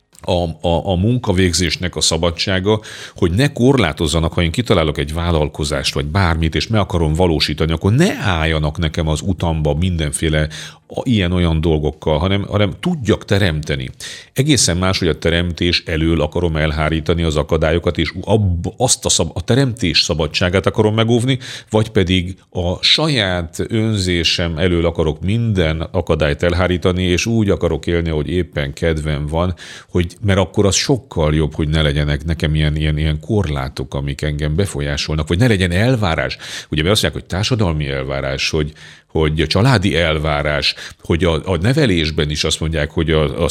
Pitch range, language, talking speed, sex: 80-95 Hz, Hungarian, 155 wpm, male